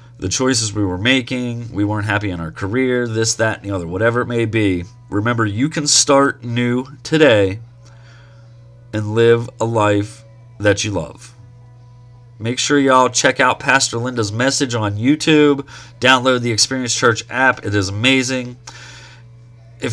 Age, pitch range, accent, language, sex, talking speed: 30-49, 105-125 Hz, American, English, male, 155 wpm